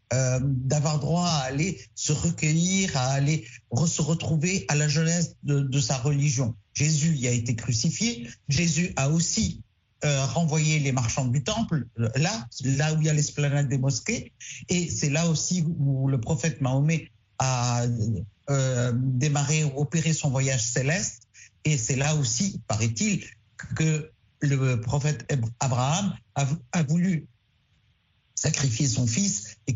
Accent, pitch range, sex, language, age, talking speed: French, 130-165 Hz, male, French, 50-69, 145 wpm